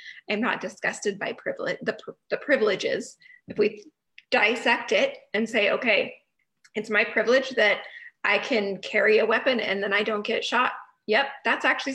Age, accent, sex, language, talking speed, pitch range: 20-39, American, female, English, 165 wpm, 205-255 Hz